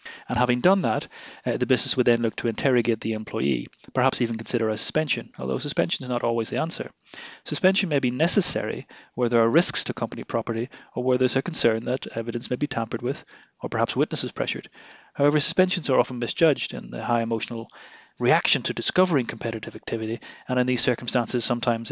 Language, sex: English, male